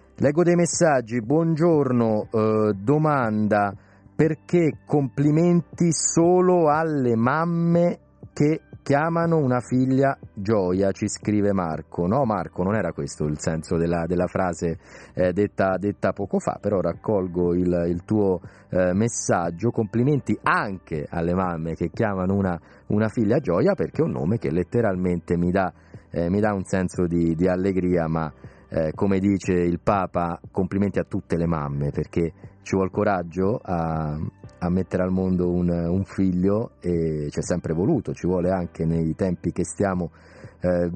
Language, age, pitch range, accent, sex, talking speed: Italian, 30-49, 90-115 Hz, native, male, 150 wpm